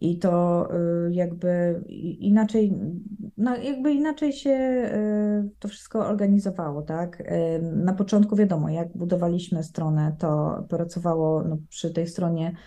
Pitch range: 160-190 Hz